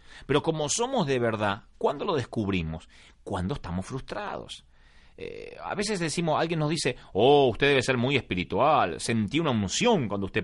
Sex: male